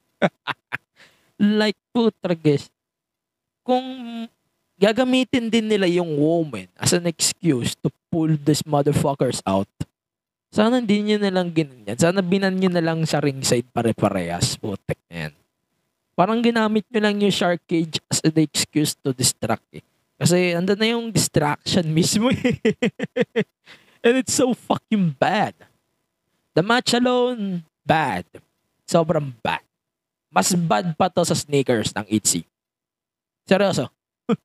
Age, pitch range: 20-39, 135-190 Hz